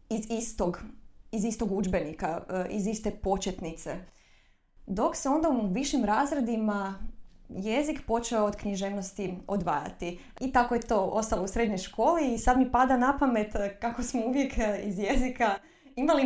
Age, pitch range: 20-39, 190-235 Hz